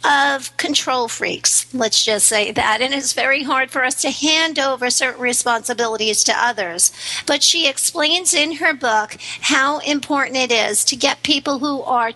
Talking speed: 175 wpm